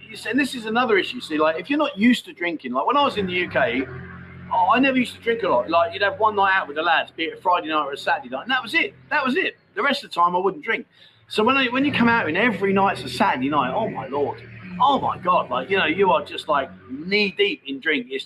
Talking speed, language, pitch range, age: 300 wpm, English, 160-235 Hz, 30-49